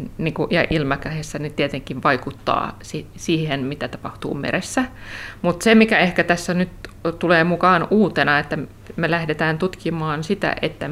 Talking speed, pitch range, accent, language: 125 wpm, 150-180 Hz, native, Finnish